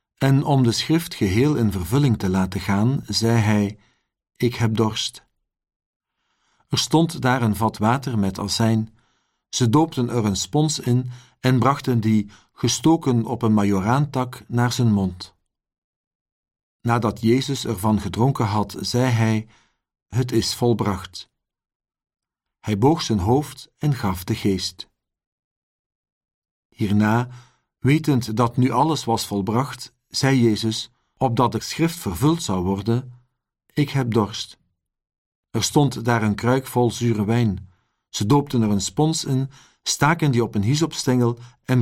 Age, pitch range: 50-69, 105-130 Hz